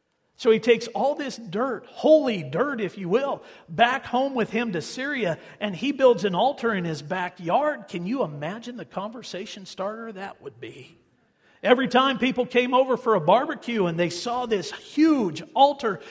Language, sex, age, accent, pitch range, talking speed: English, male, 50-69, American, 170-240 Hz, 180 wpm